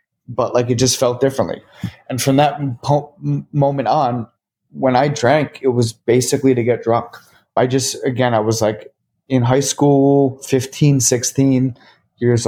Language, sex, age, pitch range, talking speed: English, male, 30-49, 115-140 Hz, 160 wpm